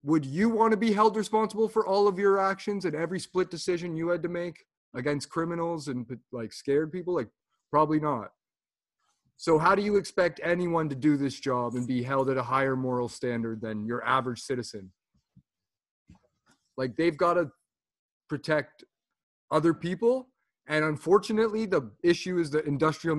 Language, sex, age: English, male, 30-49